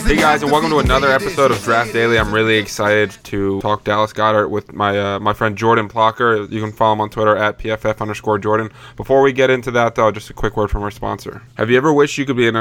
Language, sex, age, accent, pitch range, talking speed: English, male, 20-39, American, 105-120 Hz, 260 wpm